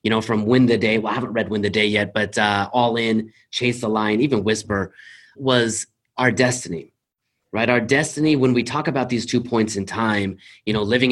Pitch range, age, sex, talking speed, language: 105-130 Hz, 30-49, male, 220 wpm, English